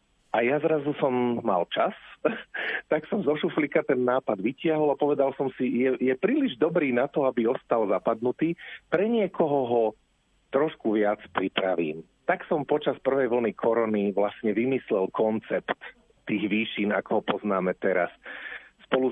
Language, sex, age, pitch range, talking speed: Slovak, male, 40-59, 105-140 Hz, 150 wpm